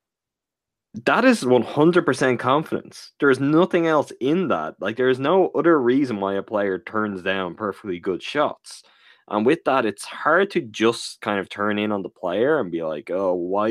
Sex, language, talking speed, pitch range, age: male, English, 190 wpm, 100-135 Hz, 20-39